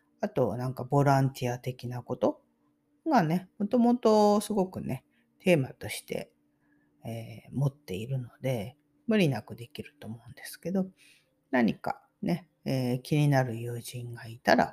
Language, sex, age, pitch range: Japanese, female, 40-59, 125-205 Hz